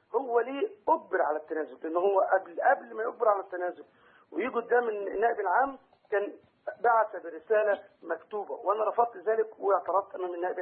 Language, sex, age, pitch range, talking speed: Arabic, male, 50-69, 190-270 Hz, 155 wpm